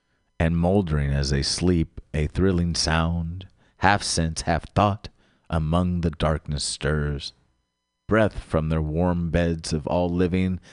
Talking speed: 135 wpm